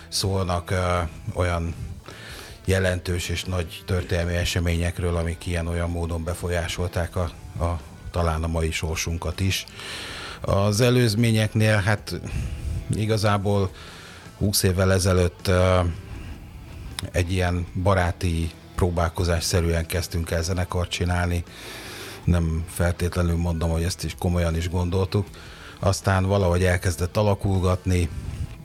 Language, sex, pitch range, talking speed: Hungarian, male, 85-95 Hz, 105 wpm